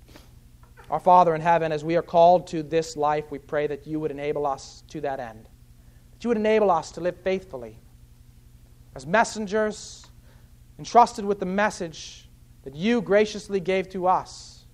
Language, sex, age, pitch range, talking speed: English, male, 40-59, 130-180 Hz, 165 wpm